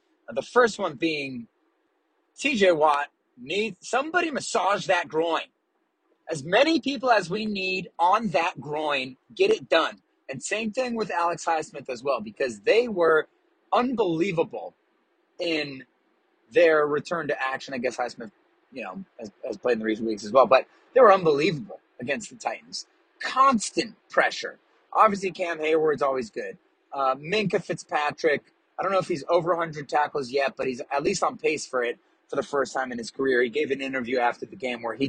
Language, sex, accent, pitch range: English, male, American, 130-220 Hz